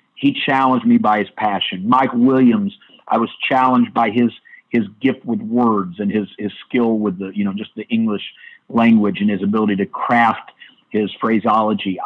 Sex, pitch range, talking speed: male, 105-145 Hz, 180 wpm